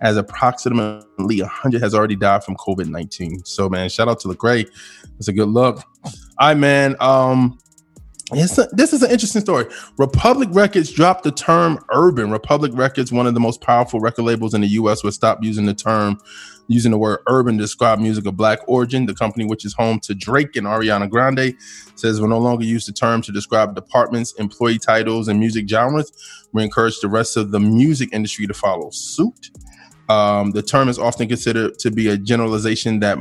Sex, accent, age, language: male, American, 20-39, English